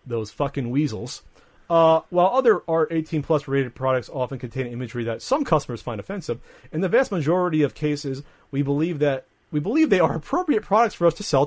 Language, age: English, 40-59